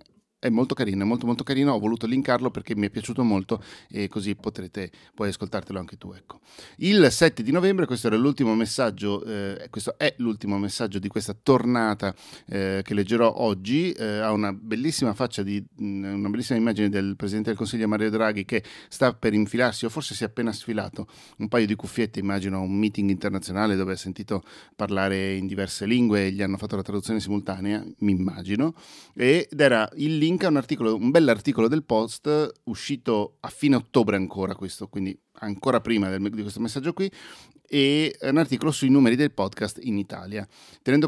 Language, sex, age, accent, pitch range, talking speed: Italian, male, 40-59, native, 100-125 Hz, 185 wpm